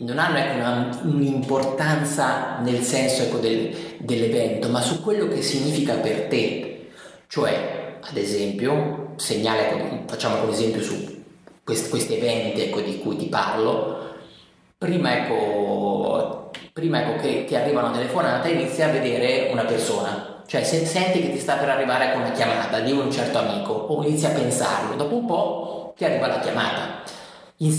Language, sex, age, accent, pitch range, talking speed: Italian, male, 30-49, native, 125-175 Hz, 160 wpm